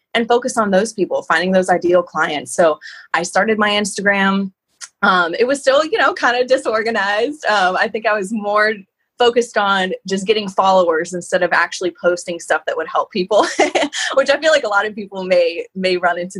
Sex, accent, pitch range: female, American, 175-225 Hz